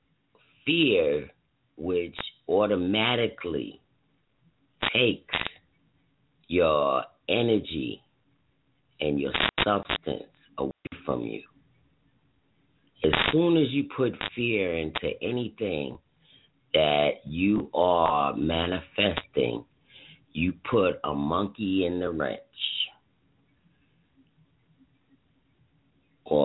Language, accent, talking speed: English, American, 75 wpm